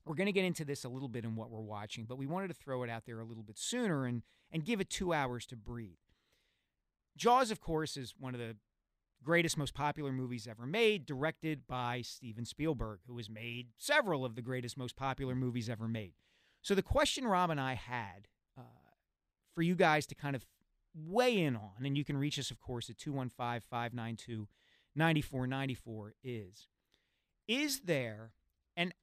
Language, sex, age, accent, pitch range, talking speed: English, male, 40-59, American, 115-165 Hz, 190 wpm